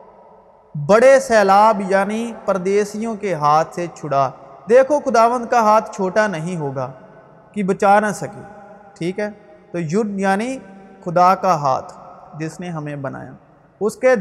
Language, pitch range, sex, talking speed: Urdu, 170-215 Hz, male, 140 wpm